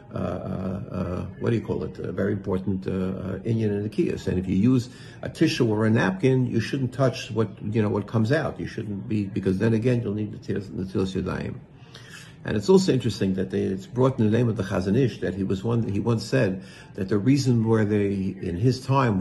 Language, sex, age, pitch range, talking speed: English, male, 60-79, 100-125 Hz, 235 wpm